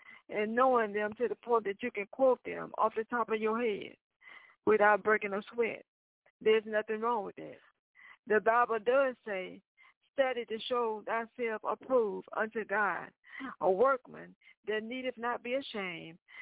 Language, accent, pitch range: English, American, 205-245 Hz